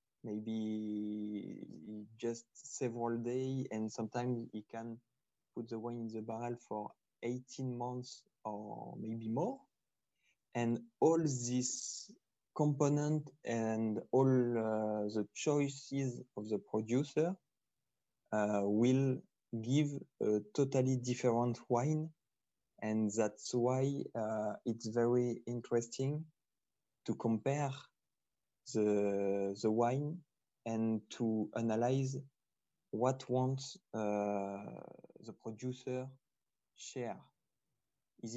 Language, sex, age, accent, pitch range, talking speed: English, male, 20-39, French, 110-135 Hz, 95 wpm